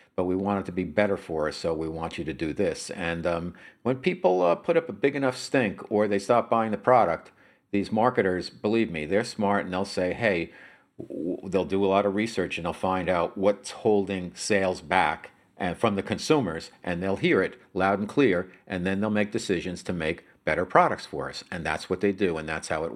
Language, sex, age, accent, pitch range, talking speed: English, male, 50-69, American, 90-125 Hz, 235 wpm